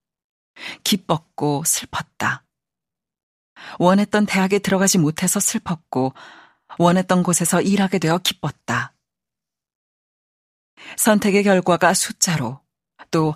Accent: native